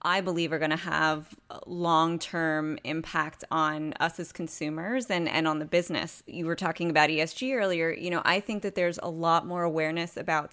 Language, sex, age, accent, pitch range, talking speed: English, female, 30-49, American, 160-190 Hz, 195 wpm